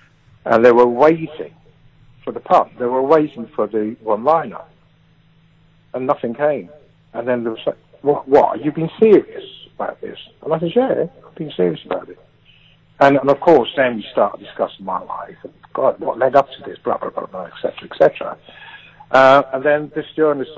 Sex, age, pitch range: male, 60-79, 125-155 Hz